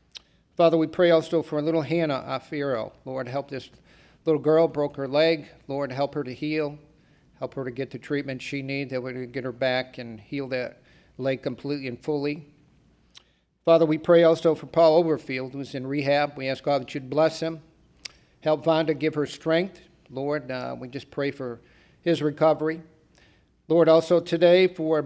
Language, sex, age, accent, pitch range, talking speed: English, male, 50-69, American, 130-155 Hz, 180 wpm